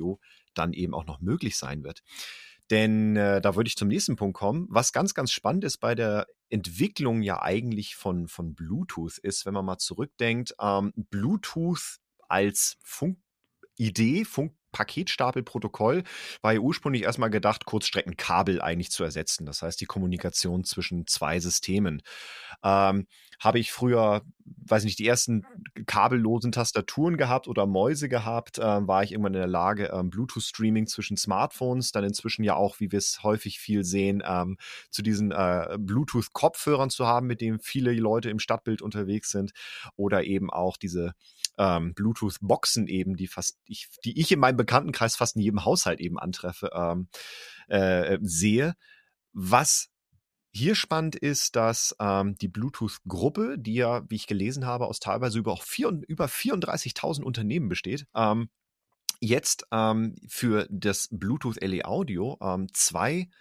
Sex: male